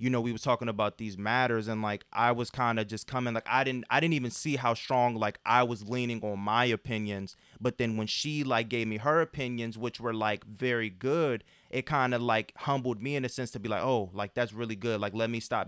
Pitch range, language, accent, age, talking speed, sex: 110-125 Hz, English, American, 20-39, 255 wpm, male